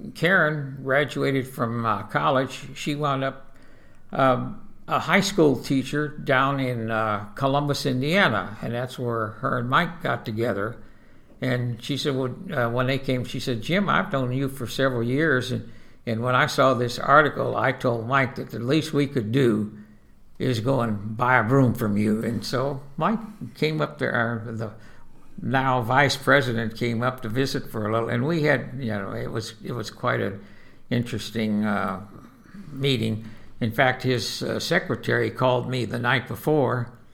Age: 60-79